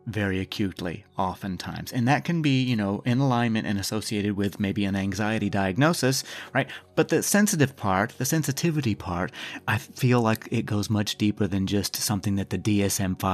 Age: 30-49